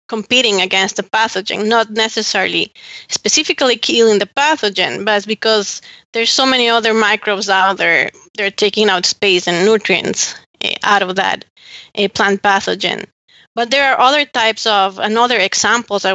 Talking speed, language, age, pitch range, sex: 150 wpm, English, 20-39, 205-230 Hz, female